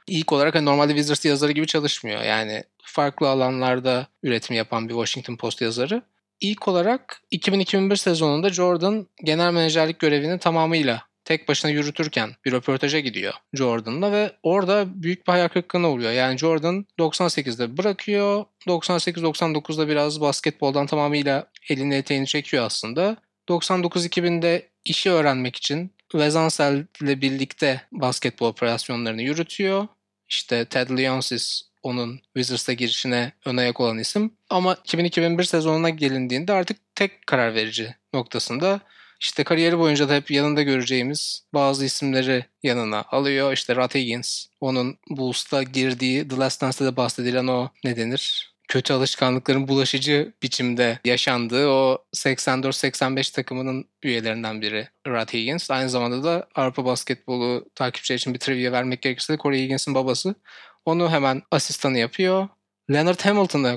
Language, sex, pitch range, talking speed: Turkish, male, 125-165 Hz, 130 wpm